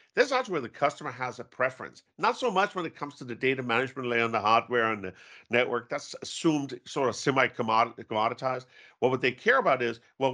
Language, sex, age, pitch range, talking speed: English, male, 50-69, 115-145 Hz, 225 wpm